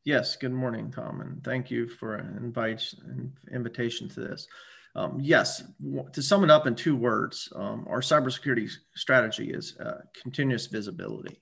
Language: English